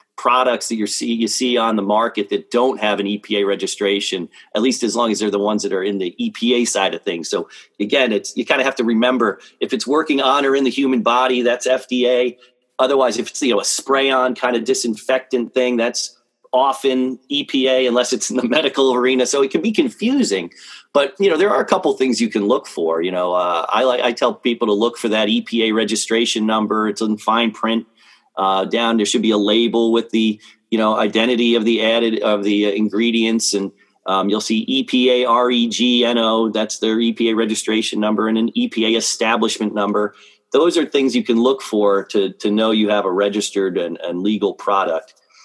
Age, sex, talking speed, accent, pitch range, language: 40-59, male, 210 wpm, American, 105-125 Hz, English